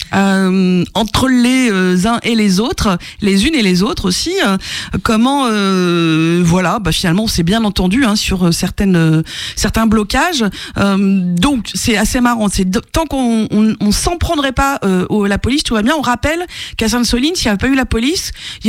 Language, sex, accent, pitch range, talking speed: French, female, French, 200-275 Hz, 200 wpm